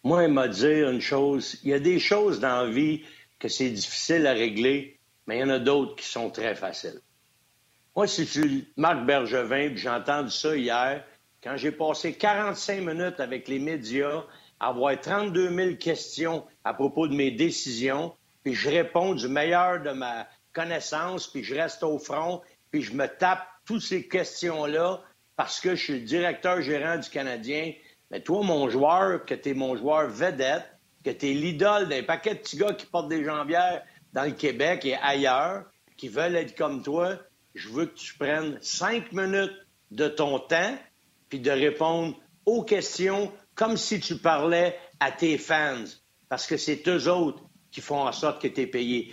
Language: French